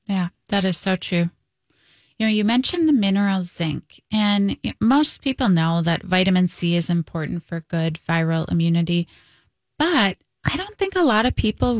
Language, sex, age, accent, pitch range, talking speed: English, female, 20-39, American, 180-225 Hz, 170 wpm